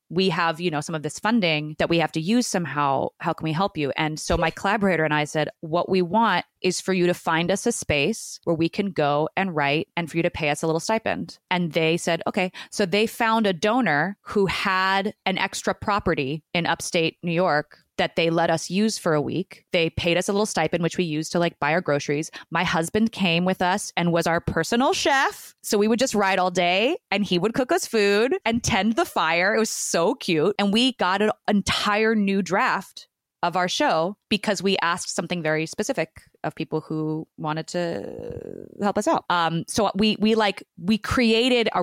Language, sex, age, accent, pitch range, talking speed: English, female, 20-39, American, 155-195 Hz, 220 wpm